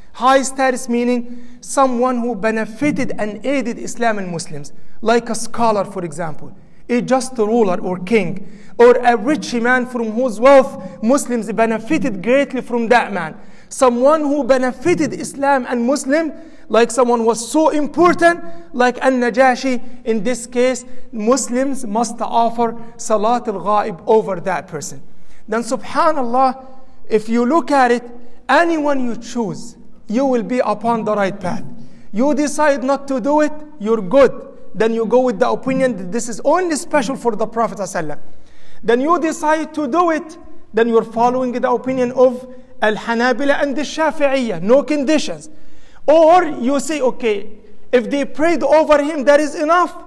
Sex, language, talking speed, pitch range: male, English, 155 wpm, 225-275 Hz